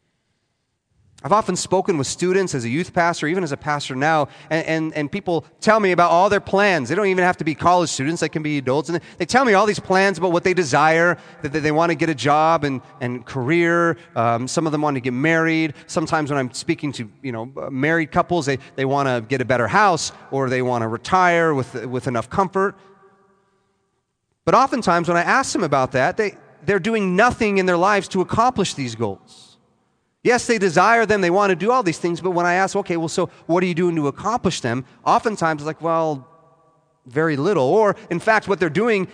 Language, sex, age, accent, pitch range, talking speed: English, male, 30-49, American, 150-195 Hz, 225 wpm